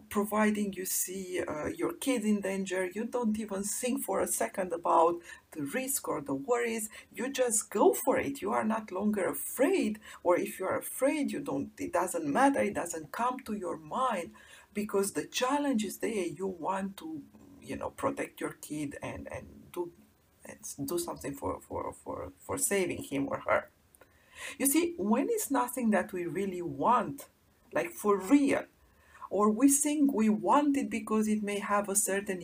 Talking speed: 180 wpm